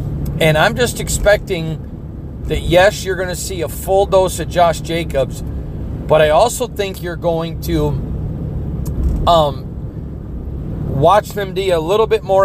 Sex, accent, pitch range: male, American, 140-175 Hz